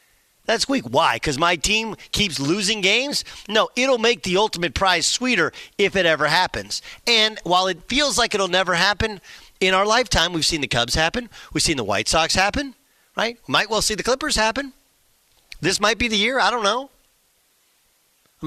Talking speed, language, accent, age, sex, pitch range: 190 wpm, English, American, 40-59, male, 150-220 Hz